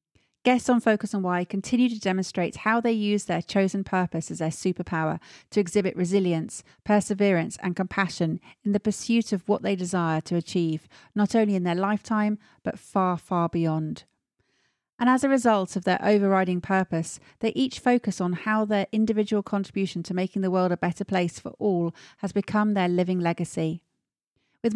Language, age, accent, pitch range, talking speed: English, 40-59, British, 175-215 Hz, 175 wpm